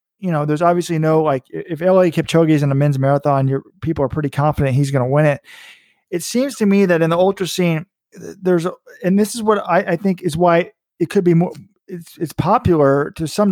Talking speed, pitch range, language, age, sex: 235 wpm, 150-185 Hz, English, 40-59, male